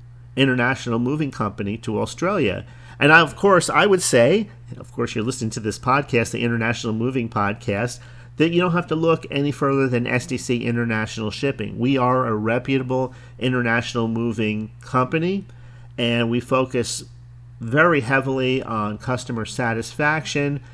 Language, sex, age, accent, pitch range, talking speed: English, male, 40-59, American, 115-130 Hz, 150 wpm